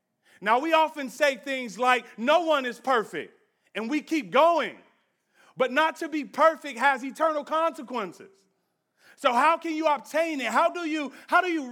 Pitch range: 165-250 Hz